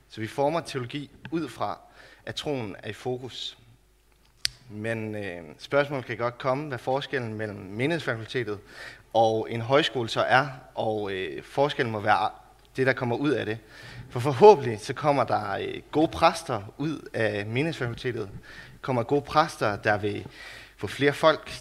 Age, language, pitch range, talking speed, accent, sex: 30-49, Danish, 110-140 Hz, 145 wpm, native, male